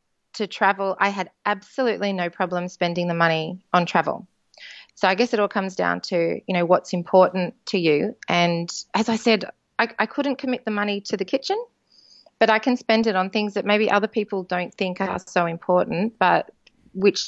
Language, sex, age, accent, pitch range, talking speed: English, female, 30-49, Australian, 180-225 Hz, 200 wpm